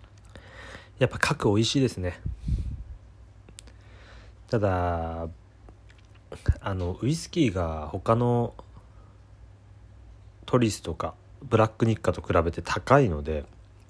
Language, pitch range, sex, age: Japanese, 95-105 Hz, male, 40-59